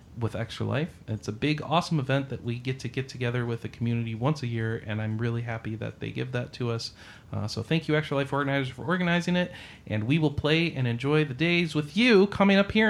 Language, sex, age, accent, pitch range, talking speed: English, male, 30-49, American, 115-165 Hz, 245 wpm